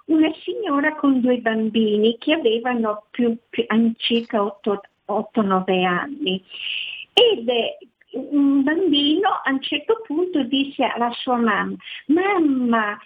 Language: Italian